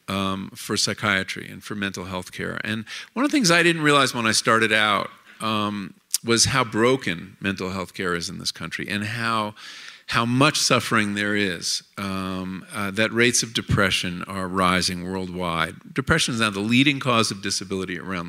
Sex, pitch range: male, 95-130 Hz